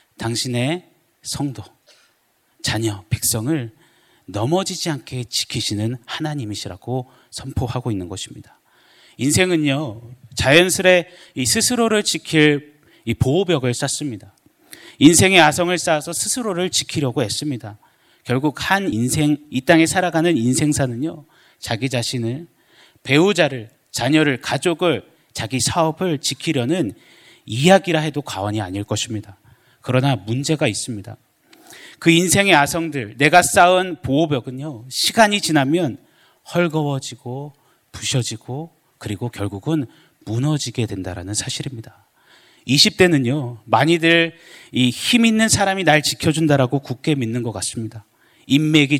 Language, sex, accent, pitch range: Korean, male, native, 115-160 Hz